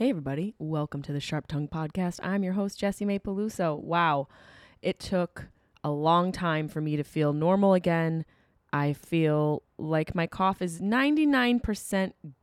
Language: English